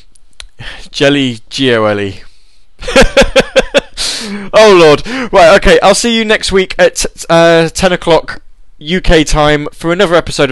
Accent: British